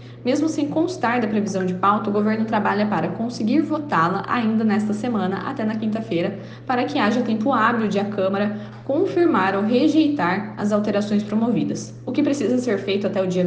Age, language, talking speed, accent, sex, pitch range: 10-29, Portuguese, 185 wpm, Brazilian, female, 200-260 Hz